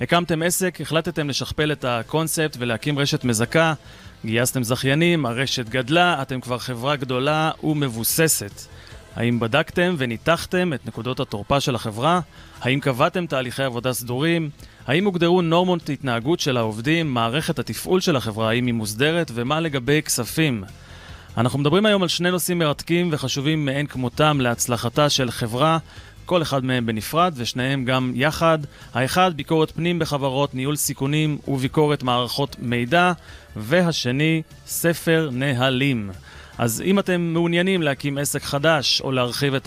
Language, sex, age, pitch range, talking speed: Hebrew, male, 30-49, 120-160 Hz, 135 wpm